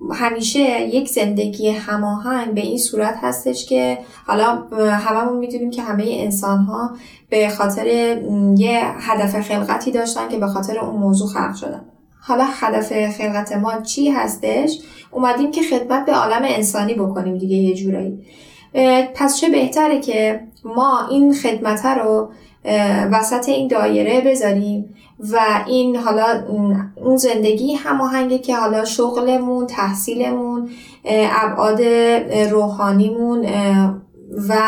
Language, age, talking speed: Persian, 10-29, 125 wpm